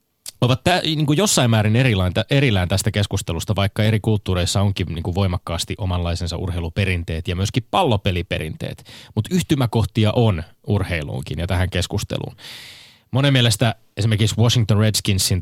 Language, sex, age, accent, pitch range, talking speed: Finnish, male, 20-39, native, 90-110 Hz, 130 wpm